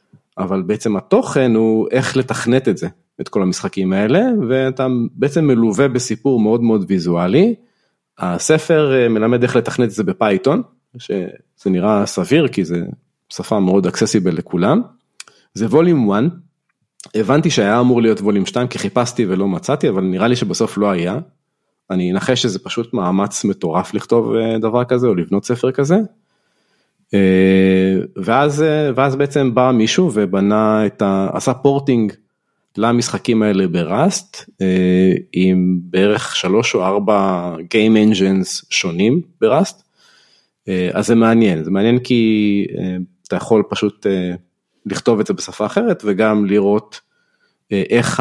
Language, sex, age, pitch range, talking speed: Hebrew, male, 40-59, 95-130 Hz, 140 wpm